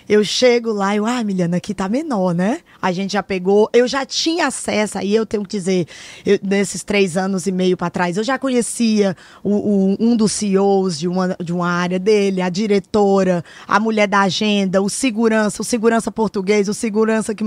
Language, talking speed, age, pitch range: Portuguese, 205 wpm, 20-39, 195-270 Hz